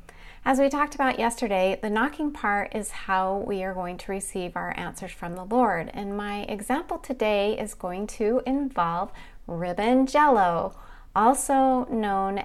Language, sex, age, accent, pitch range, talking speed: English, female, 30-49, American, 185-245 Hz, 155 wpm